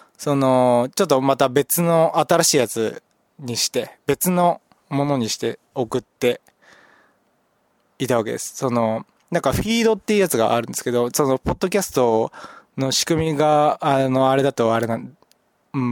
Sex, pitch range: male, 120-175 Hz